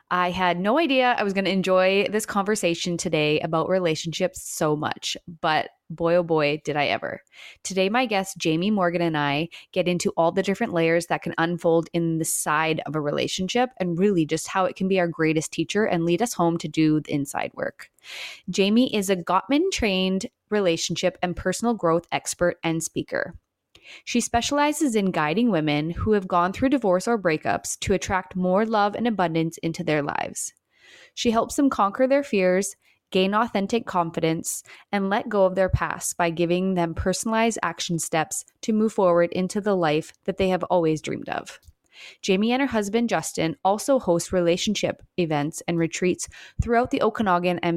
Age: 20-39